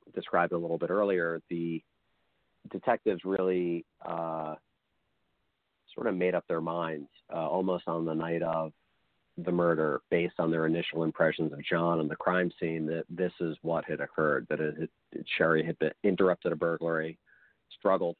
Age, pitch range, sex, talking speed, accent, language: 40-59, 80-85 Hz, male, 170 wpm, American, English